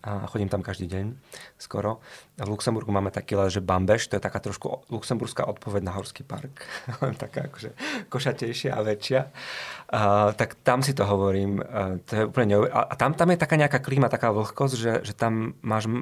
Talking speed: 195 wpm